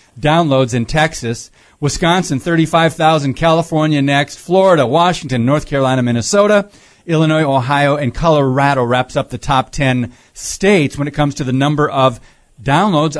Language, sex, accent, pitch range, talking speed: English, male, American, 130-180 Hz, 135 wpm